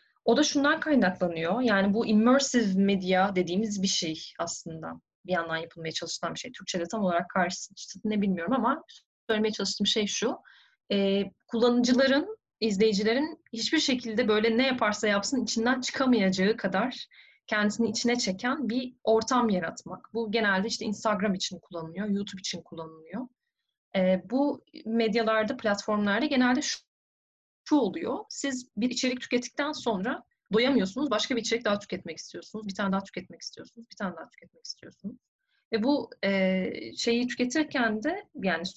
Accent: native